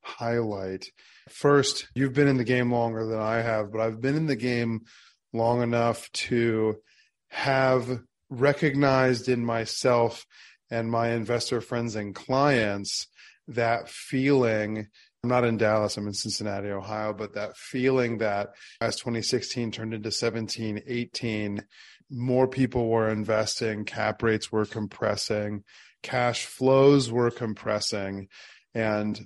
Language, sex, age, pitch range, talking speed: English, male, 30-49, 105-125 Hz, 130 wpm